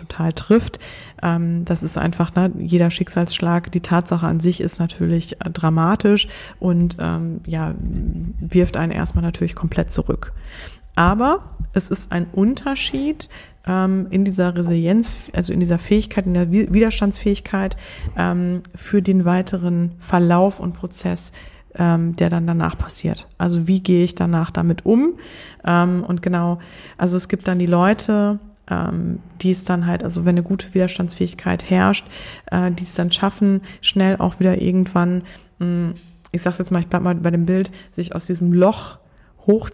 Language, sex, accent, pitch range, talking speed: German, female, German, 175-200 Hz, 150 wpm